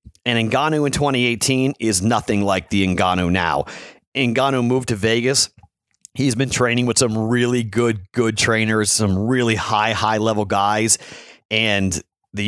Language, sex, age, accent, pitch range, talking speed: English, male, 40-59, American, 100-130 Hz, 145 wpm